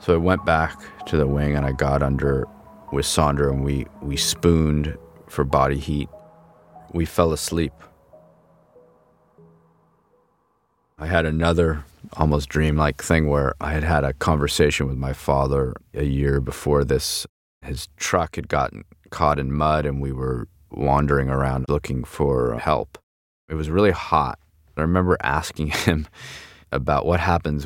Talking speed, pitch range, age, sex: 150 wpm, 70-80 Hz, 30-49, male